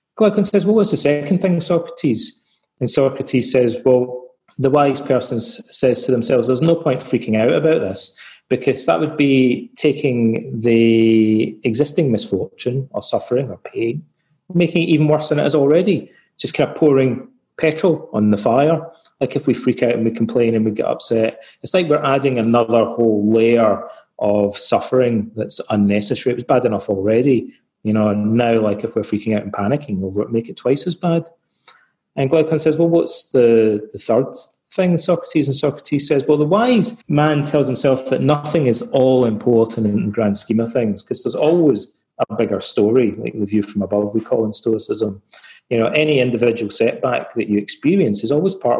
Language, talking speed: English, 195 wpm